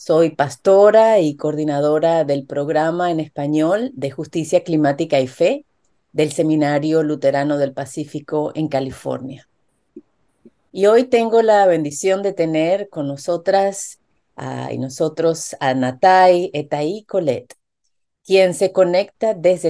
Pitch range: 145-185 Hz